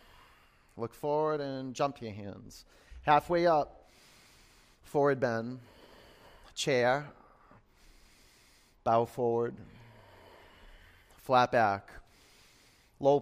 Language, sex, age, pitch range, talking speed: English, male, 40-59, 115-140 Hz, 75 wpm